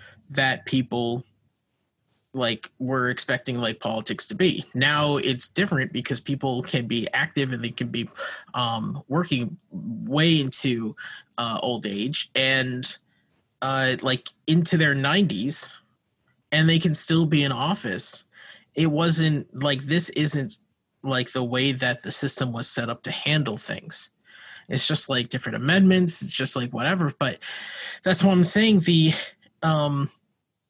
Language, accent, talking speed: English, American, 145 wpm